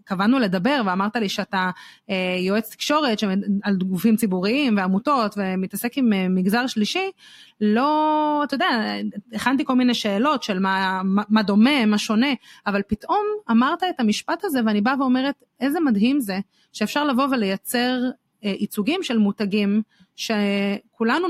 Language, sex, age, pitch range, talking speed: Hebrew, female, 30-49, 200-255 Hz, 140 wpm